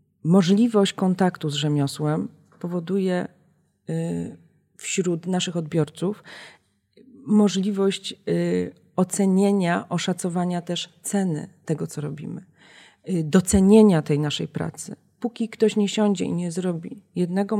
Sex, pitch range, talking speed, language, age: female, 170-210 Hz, 95 wpm, Polish, 30-49